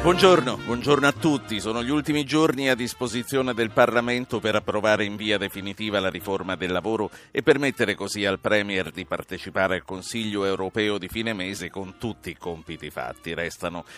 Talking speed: 170 wpm